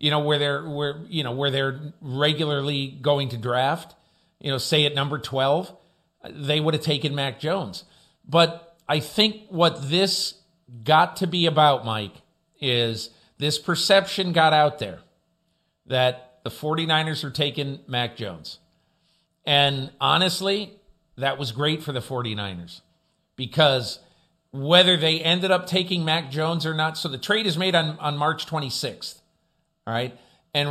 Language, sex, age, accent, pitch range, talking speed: English, male, 50-69, American, 140-170 Hz, 150 wpm